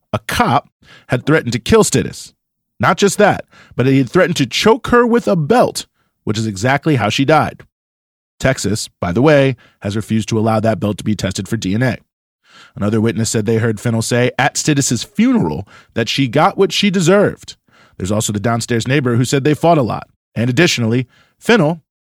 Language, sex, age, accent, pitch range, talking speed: English, male, 30-49, American, 115-160 Hz, 195 wpm